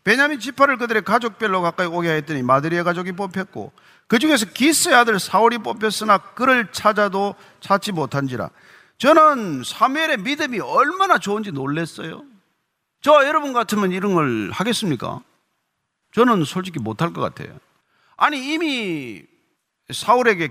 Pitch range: 175-255 Hz